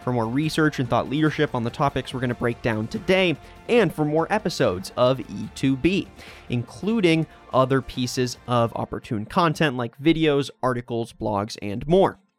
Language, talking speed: English, 160 wpm